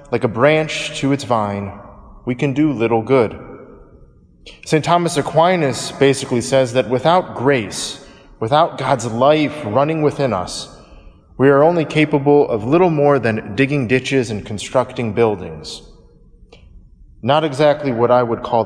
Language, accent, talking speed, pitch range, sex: English, American, 140 wpm, 110-150 Hz, male